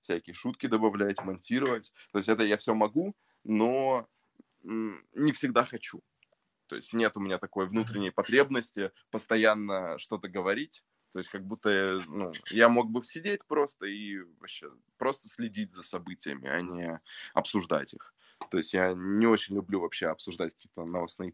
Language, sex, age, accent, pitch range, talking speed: Russian, male, 20-39, native, 95-115 Hz, 155 wpm